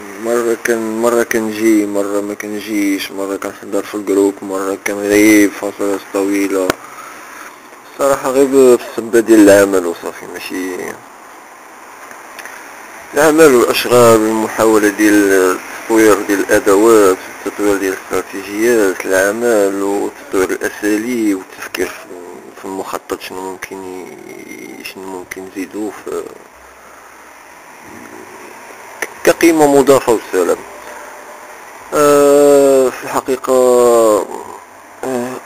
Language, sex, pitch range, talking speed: English, male, 100-120 Hz, 85 wpm